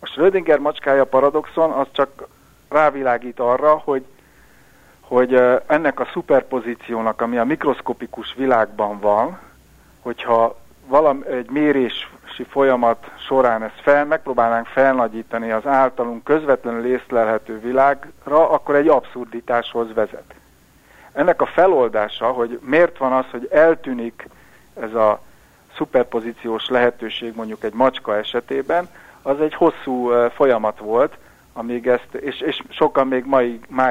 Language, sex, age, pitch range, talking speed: Hungarian, male, 60-79, 115-135 Hz, 115 wpm